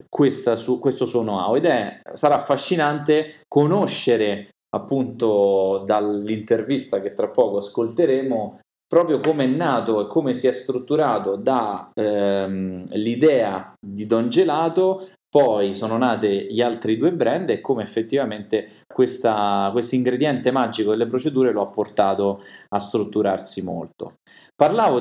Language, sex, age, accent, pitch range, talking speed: Italian, male, 20-39, native, 100-130 Hz, 120 wpm